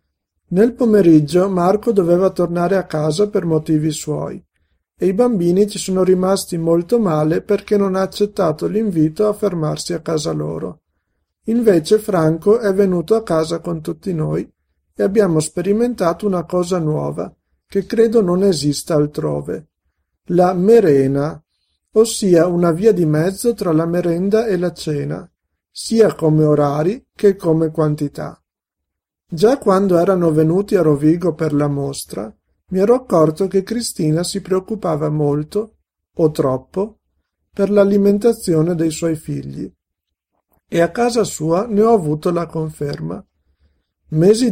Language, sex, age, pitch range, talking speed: Italian, male, 50-69, 150-200 Hz, 135 wpm